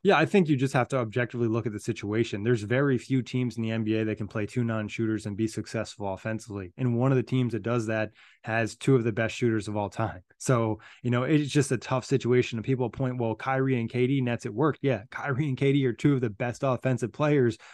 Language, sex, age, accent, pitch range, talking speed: English, male, 20-39, American, 120-135 Hz, 255 wpm